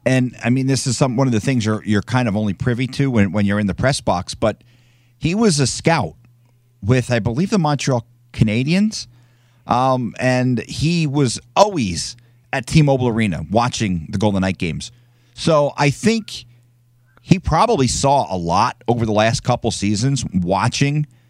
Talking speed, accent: 175 wpm, American